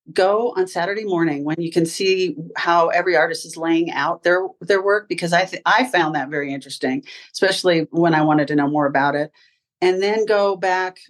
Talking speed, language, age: 200 wpm, English, 40-59